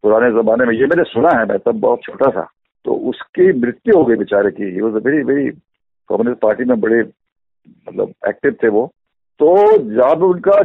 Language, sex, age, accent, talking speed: Hindi, male, 50-69, native, 205 wpm